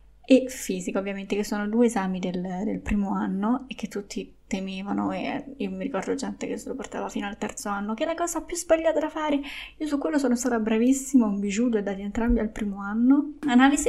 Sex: female